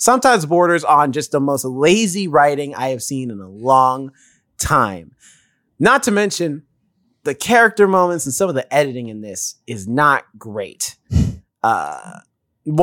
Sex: male